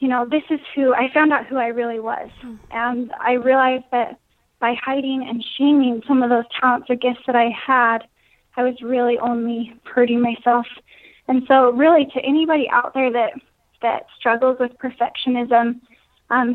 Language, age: English, 10-29